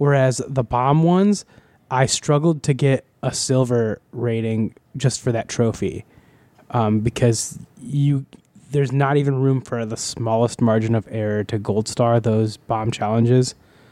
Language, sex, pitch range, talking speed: English, male, 120-140 Hz, 145 wpm